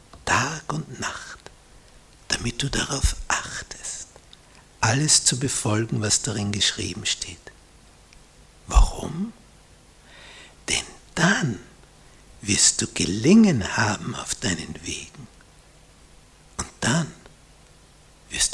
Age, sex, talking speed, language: 60-79, male, 85 wpm, German